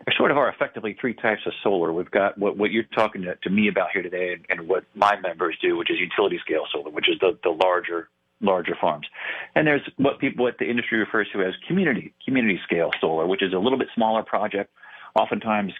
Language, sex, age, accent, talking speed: English, male, 40-59, American, 230 wpm